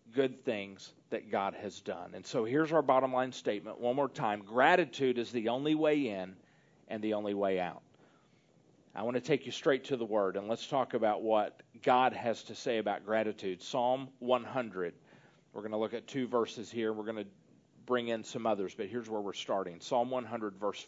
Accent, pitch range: American, 120-165 Hz